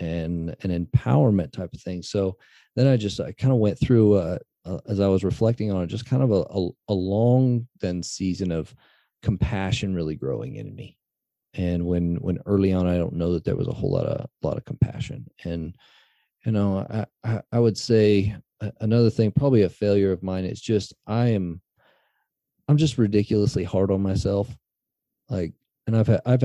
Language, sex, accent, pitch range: English, male, American, 95-120 Hz